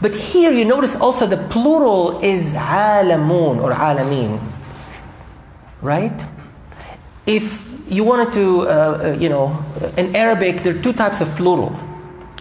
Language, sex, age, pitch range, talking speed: English, male, 40-59, 155-200 Hz, 135 wpm